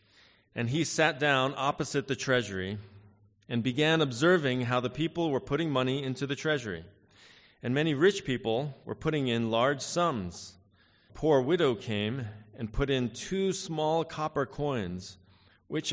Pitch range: 105-145 Hz